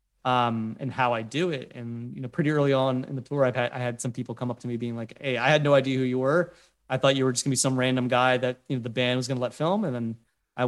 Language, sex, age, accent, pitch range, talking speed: English, male, 20-39, American, 125-145 Hz, 320 wpm